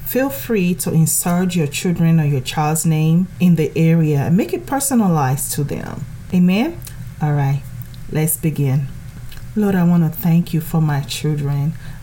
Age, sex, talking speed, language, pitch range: 30-49, female, 160 wpm, English, 145-175 Hz